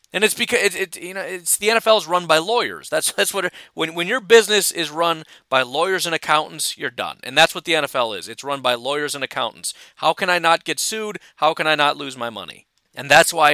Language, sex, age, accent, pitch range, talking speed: English, male, 40-59, American, 150-210 Hz, 255 wpm